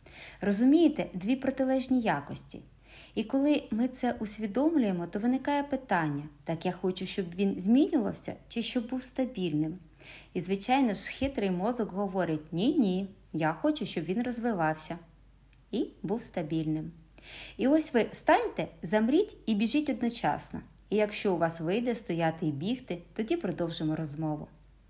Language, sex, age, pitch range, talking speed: Ukrainian, female, 30-49, 165-240 Hz, 135 wpm